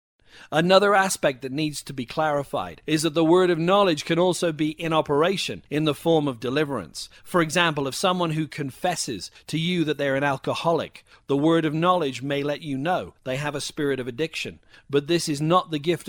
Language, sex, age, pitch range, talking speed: English, male, 40-59, 135-175 Hz, 205 wpm